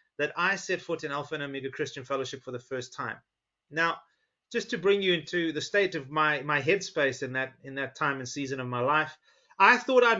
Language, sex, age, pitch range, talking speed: English, male, 30-49, 150-205 Hz, 230 wpm